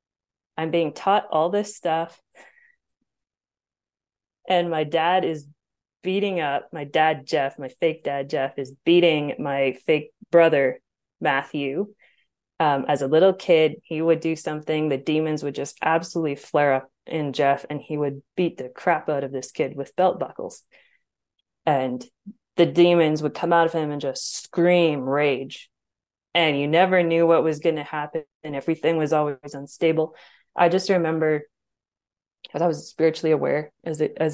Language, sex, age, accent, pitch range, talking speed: English, female, 20-39, American, 150-180 Hz, 165 wpm